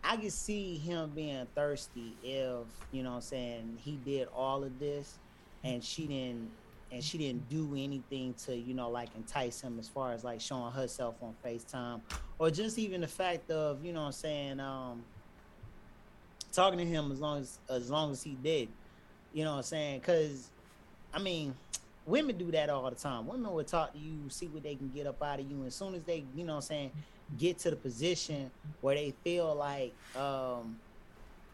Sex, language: male, English